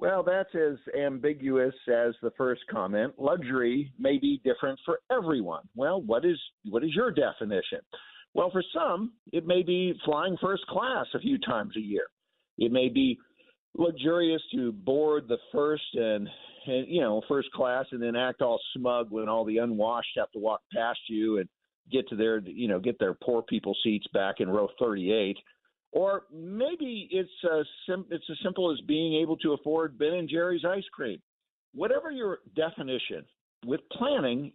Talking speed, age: 175 wpm, 50-69